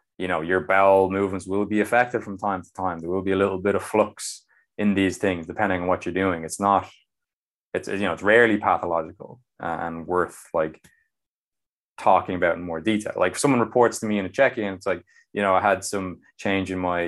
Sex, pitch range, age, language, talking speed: male, 85-105 Hz, 20-39, English, 220 wpm